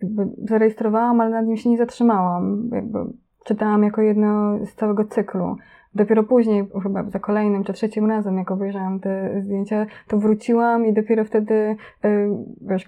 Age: 20-39